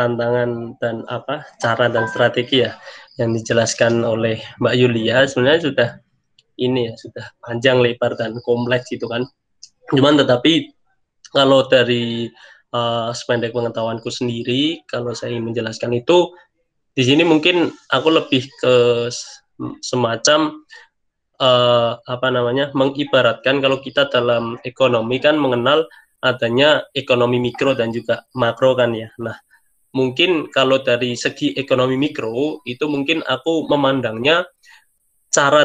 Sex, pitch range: male, 120-135 Hz